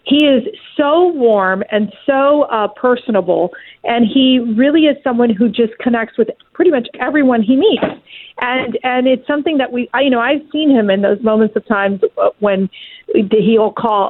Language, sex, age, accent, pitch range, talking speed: English, female, 40-59, American, 195-245 Hz, 180 wpm